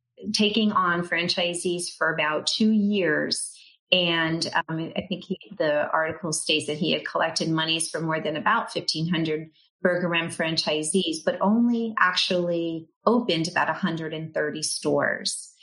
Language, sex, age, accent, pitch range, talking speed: English, female, 30-49, American, 160-185 Hz, 130 wpm